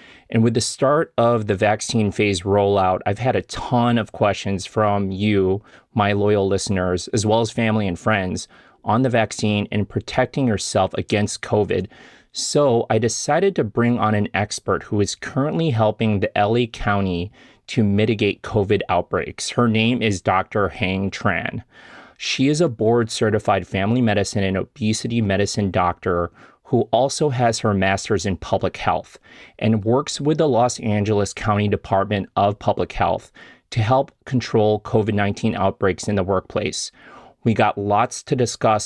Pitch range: 100-115 Hz